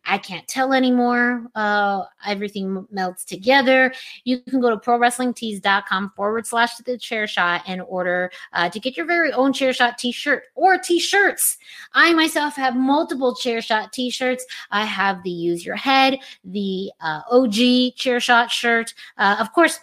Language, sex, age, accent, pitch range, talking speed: English, female, 30-49, American, 195-260 Hz, 165 wpm